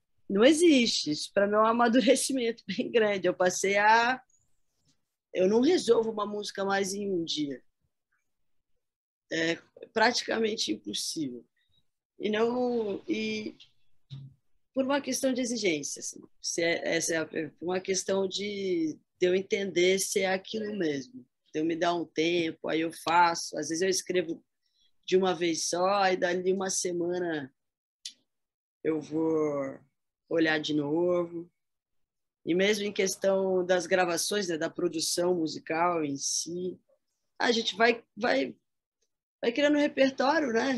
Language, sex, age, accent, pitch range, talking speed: Portuguese, female, 20-39, Brazilian, 170-230 Hz, 140 wpm